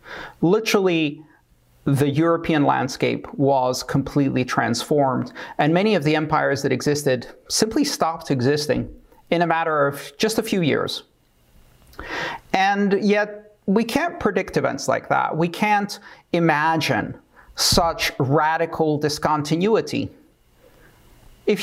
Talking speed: 110 wpm